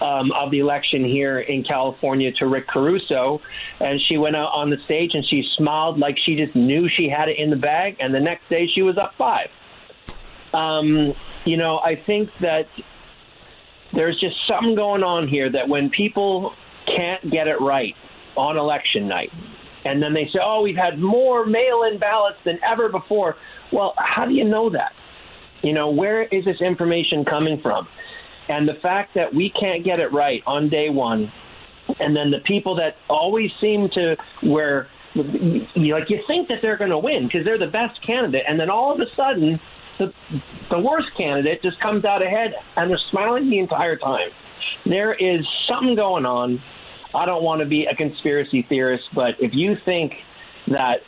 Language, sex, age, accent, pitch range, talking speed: English, male, 40-59, American, 145-205 Hz, 185 wpm